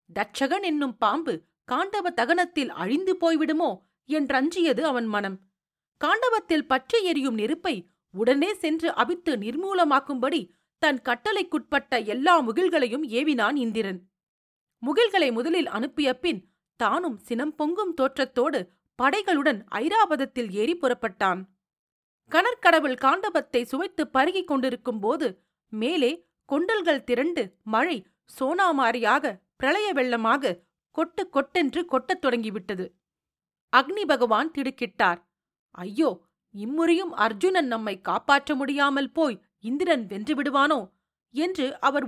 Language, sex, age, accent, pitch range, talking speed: Tamil, female, 40-59, native, 230-330 Hz, 85 wpm